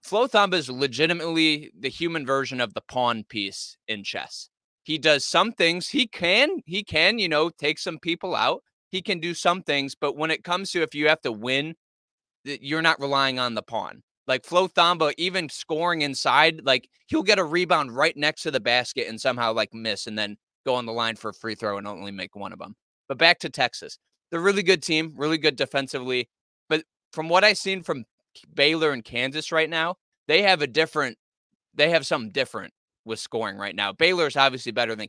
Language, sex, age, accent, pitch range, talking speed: English, male, 20-39, American, 125-165 Hz, 210 wpm